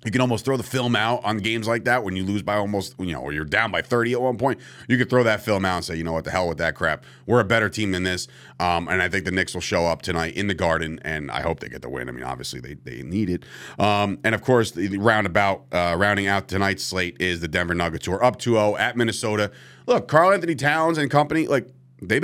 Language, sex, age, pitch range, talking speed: English, male, 30-49, 90-125 Hz, 280 wpm